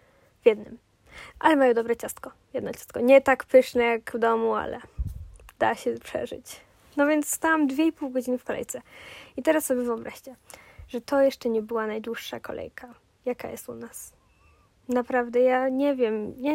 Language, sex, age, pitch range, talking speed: Polish, female, 20-39, 235-280 Hz, 165 wpm